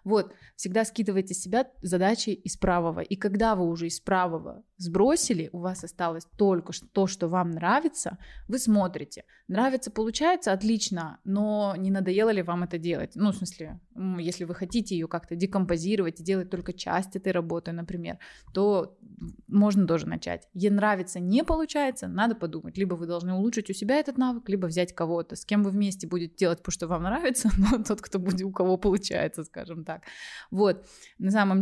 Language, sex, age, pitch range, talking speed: Russian, female, 20-39, 175-210 Hz, 175 wpm